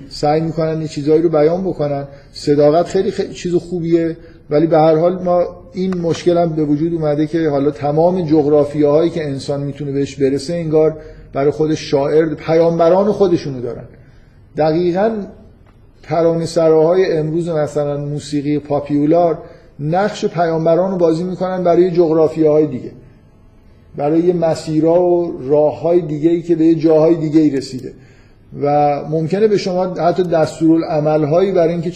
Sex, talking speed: male, 135 wpm